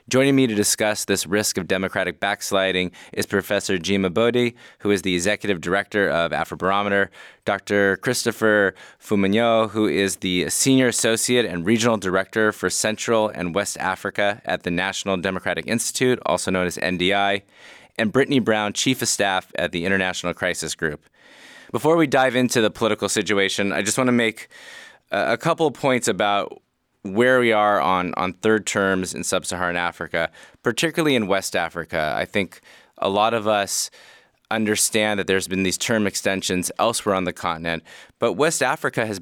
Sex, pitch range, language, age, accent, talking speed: male, 90-115 Hz, English, 20-39, American, 165 wpm